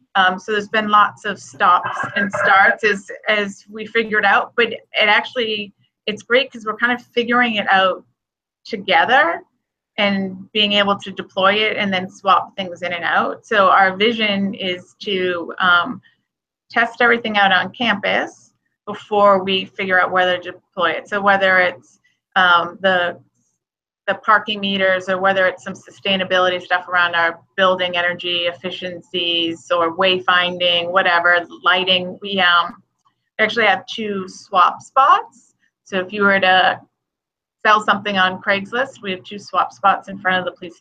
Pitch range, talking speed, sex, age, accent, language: 180-205 Hz, 160 wpm, female, 30-49, American, English